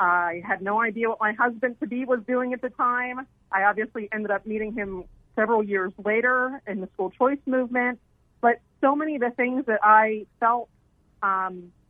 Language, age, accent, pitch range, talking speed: English, 40-59, American, 180-230 Hz, 180 wpm